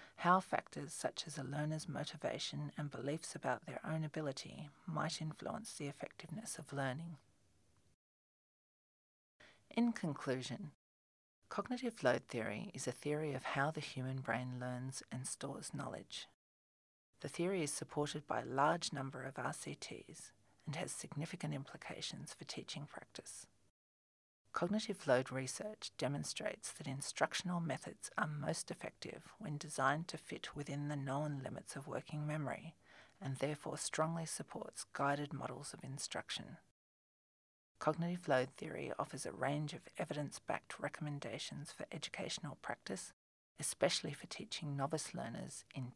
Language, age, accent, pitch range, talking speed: English, 40-59, Australian, 130-160 Hz, 130 wpm